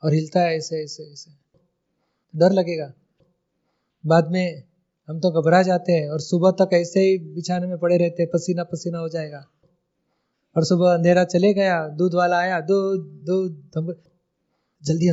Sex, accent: male, native